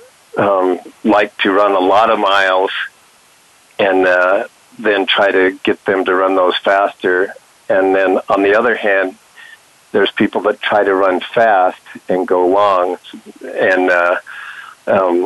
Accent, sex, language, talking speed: American, male, English, 145 wpm